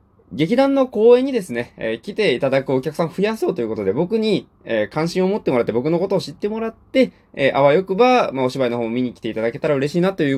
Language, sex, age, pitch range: Japanese, male, 20-39, 100-160 Hz